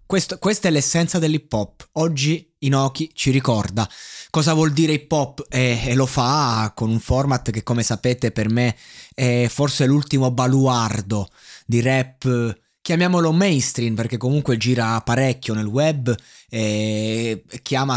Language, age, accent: Italian, 20-39, native